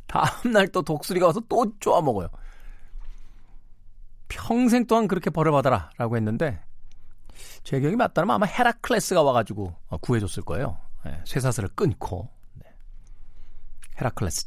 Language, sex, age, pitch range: Korean, male, 40-59, 100-130 Hz